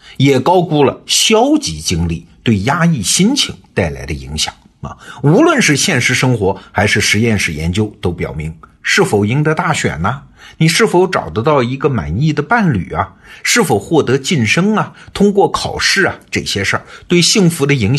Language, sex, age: Chinese, male, 50-69